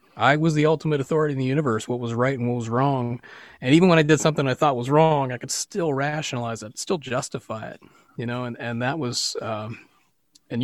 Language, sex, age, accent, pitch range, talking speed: English, male, 30-49, American, 120-150 Hz, 230 wpm